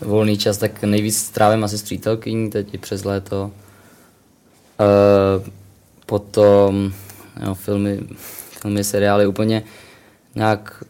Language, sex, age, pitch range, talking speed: Czech, male, 20-39, 95-105 Hz, 110 wpm